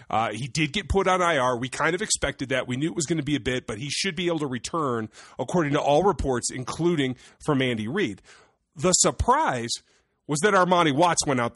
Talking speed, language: 230 wpm, English